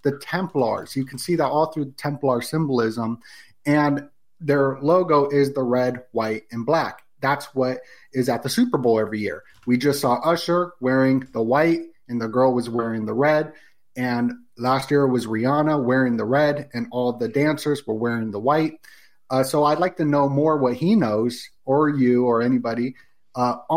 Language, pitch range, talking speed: English, 125-155 Hz, 185 wpm